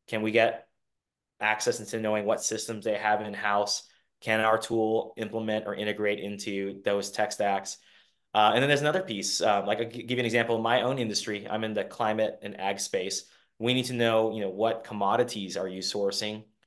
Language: English